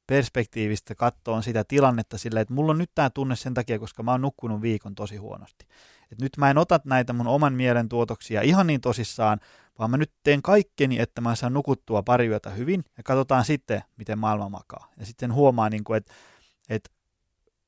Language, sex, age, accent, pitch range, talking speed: Finnish, male, 20-39, native, 110-145 Hz, 190 wpm